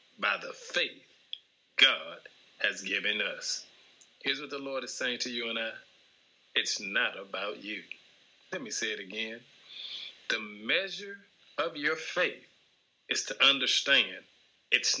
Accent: American